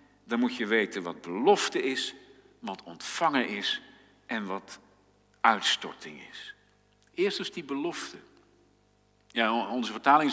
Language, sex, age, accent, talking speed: Dutch, male, 50-69, Dutch, 115 wpm